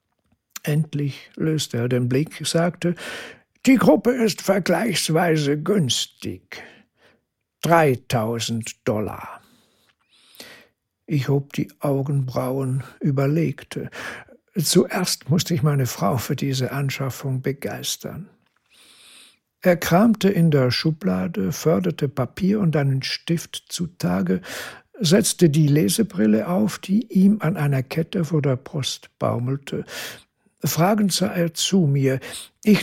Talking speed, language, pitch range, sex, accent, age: 105 wpm, German, 135-185 Hz, male, German, 60-79